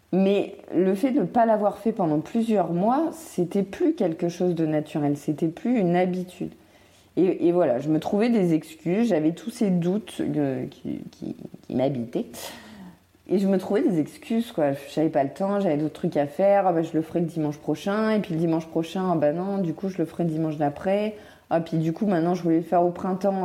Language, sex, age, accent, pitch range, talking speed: French, female, 30-49, French, 150-190 Hz, 230 wpm